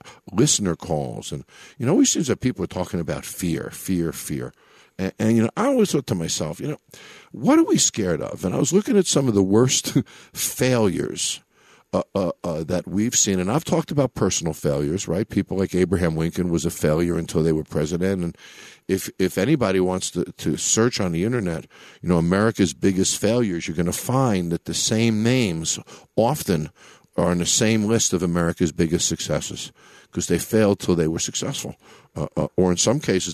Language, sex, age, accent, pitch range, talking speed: English, male, 50-69, American, 85-130 Hz, 205 wpm